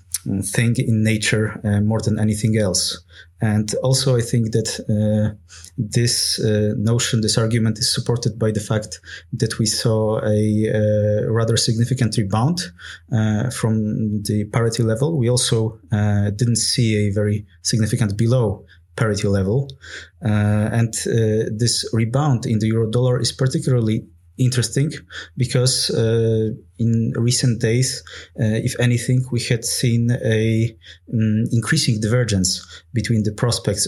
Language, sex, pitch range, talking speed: English, male, 105-120 Hz, 135 wpm